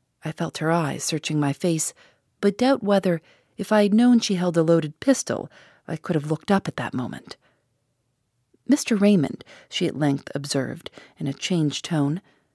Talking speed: 175 wpm